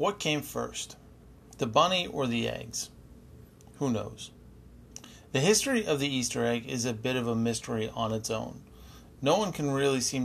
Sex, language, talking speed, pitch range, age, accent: male, English, 175 wpm, 115-135 Hz, 40-59, American